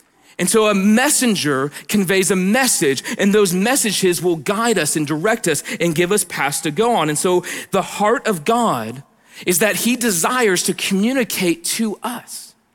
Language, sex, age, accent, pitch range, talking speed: English, male, 40-59, American, 150-205 Hz, 175 wpm